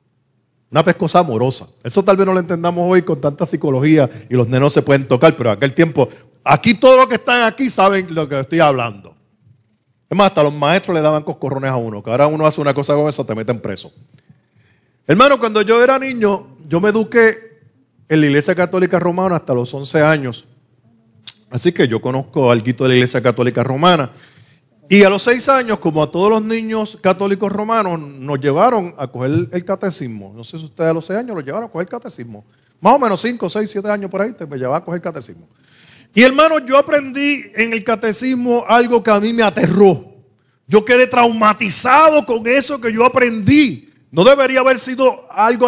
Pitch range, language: 140-230 Hz, Spanish